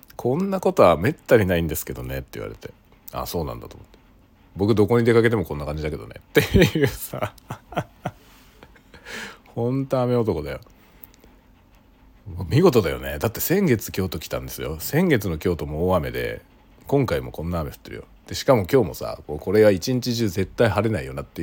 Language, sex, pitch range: Japanese, male, 90-120 Hz